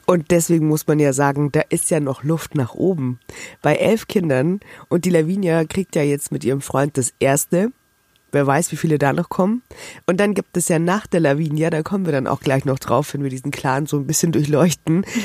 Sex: female